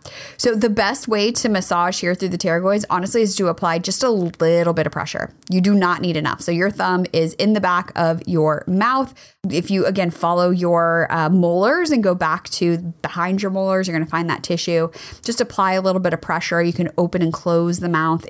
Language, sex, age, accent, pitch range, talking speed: English, female, 20-39, American, 160-200 Hz, 225 wpm